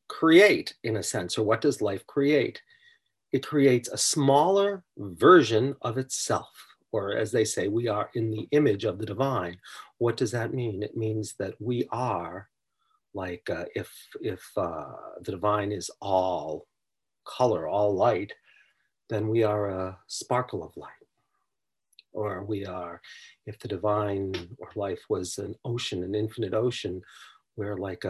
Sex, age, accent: male, 40-59, American